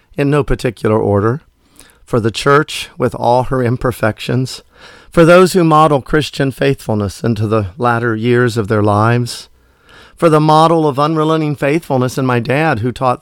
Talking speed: 160 wpm